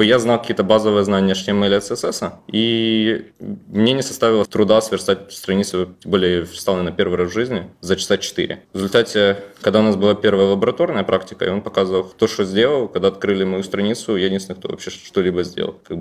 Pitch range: 95-110 Hz